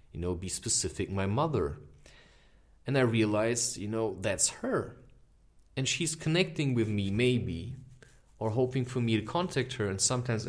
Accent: German